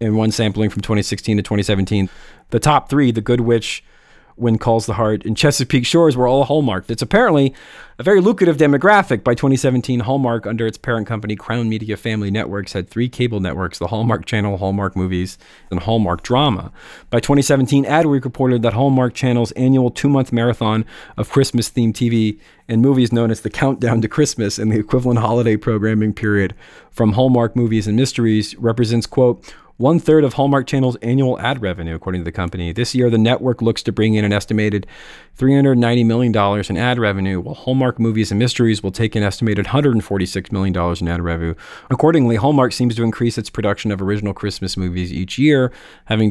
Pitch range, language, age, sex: 105-130 Hz, English, 40-59, male